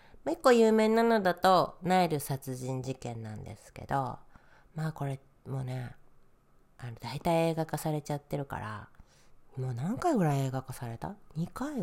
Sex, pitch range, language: female, 120-155 Hz, Japanese